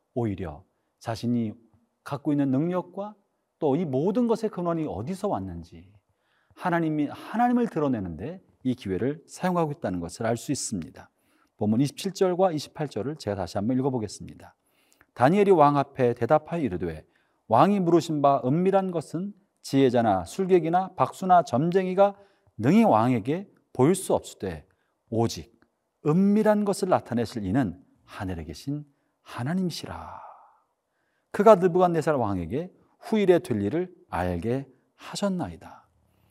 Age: 40-59